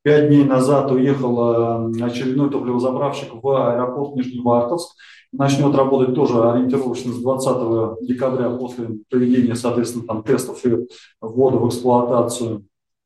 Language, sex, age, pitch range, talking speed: Russian, male, 20-39, 120-140 Hz, 115 wpm